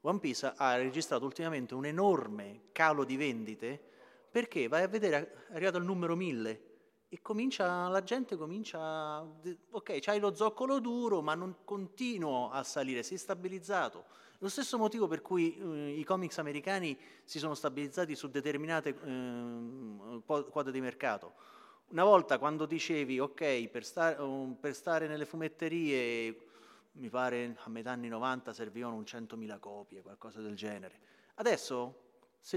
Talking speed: 155 wpm